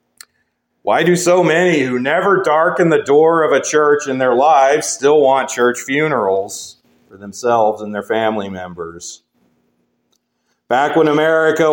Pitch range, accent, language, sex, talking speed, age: 120-160 Hz, American, English, male, 145 wpm, 40-59